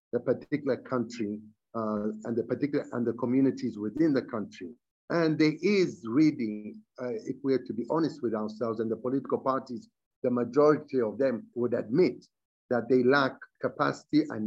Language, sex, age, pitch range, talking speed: English, male, 50-69, 115-155 Hz, 170 wpm